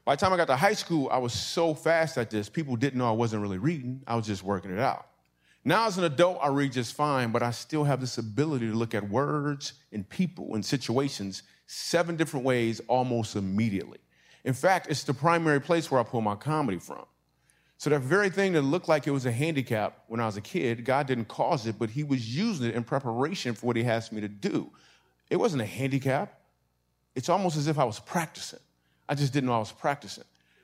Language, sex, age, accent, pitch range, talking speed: English, male, 30-49, American, 110-150 Hz, 230 wpm